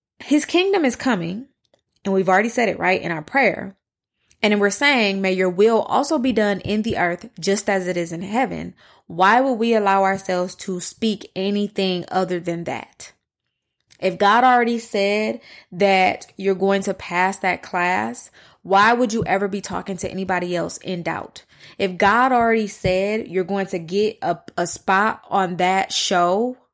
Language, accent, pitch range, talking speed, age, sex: English, American, 185-220 Hz, 175 wpm, 20-39, female